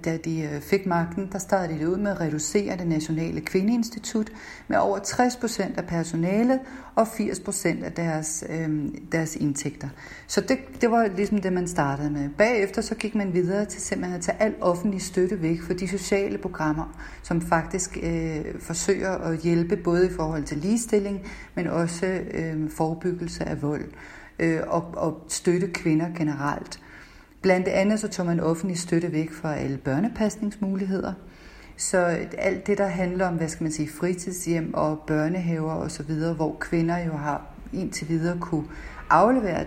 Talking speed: 165 wpm